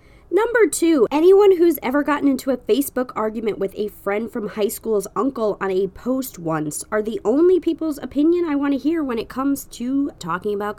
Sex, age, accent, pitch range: female, 20-39, American, 200-290 Hz